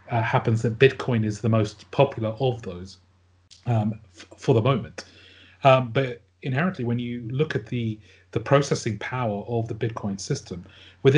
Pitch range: 100-125 Hz